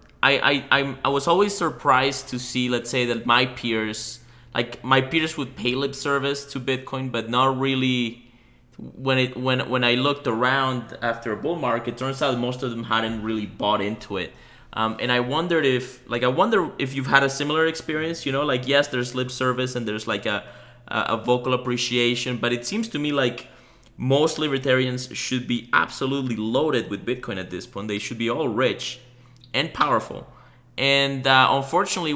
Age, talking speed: 20-39, 190 wpm